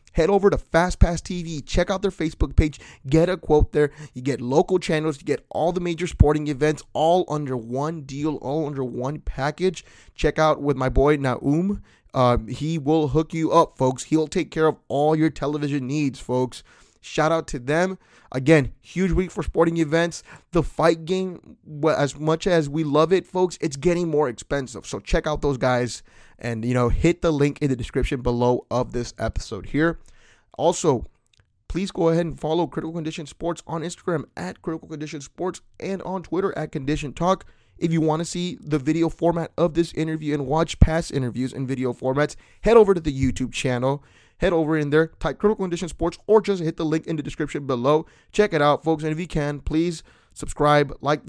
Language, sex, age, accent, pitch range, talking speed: English, male, 20-39, American, 135-165 Hz, 200 wpm